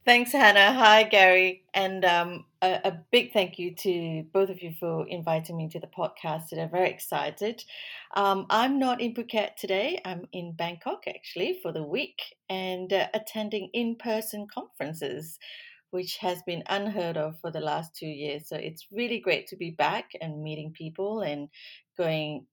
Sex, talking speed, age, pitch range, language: female, 175 wpm, 30-49, 175-210 Hz, English